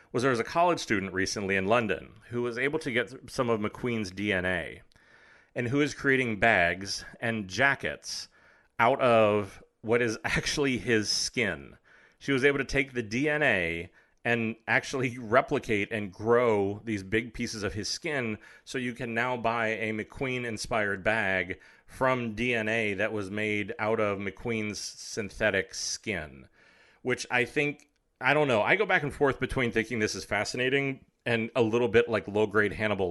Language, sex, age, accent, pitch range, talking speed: English, male, 30-49, American, 100-125 Hz, 165 wpm